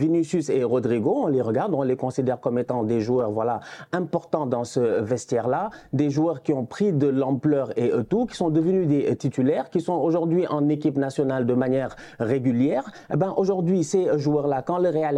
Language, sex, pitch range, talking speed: French, male, 145-230 Hz, 195 wpm